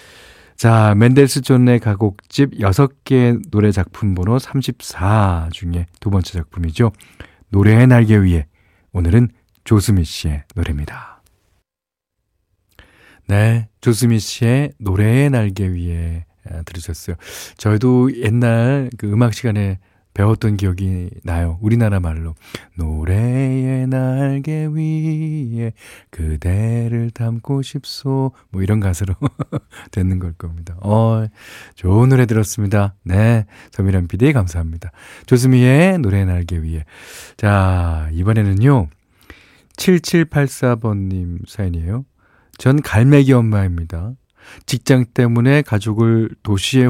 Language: Korean